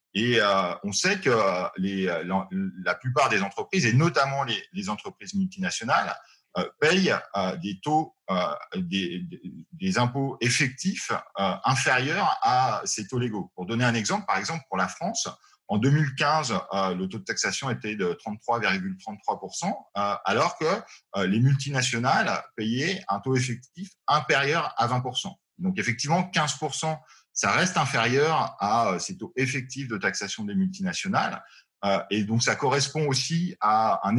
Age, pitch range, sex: 40-59, 110-180 Hz, male